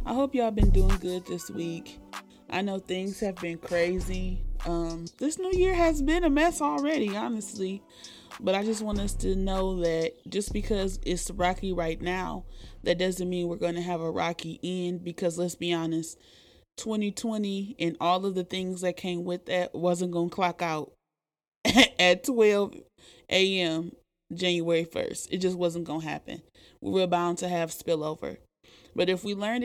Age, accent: 20-39, American